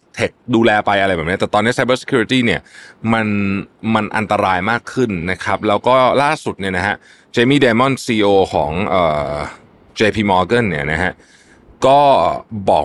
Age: 20-39